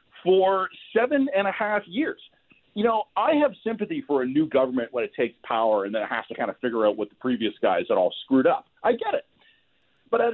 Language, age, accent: English, 40-59, American